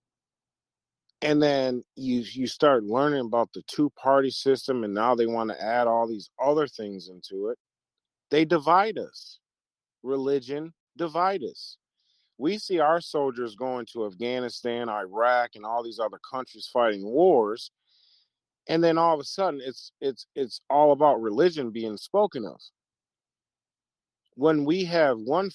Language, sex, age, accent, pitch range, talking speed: English, male, 40-59, American, 120-160 Hz, 145 wpm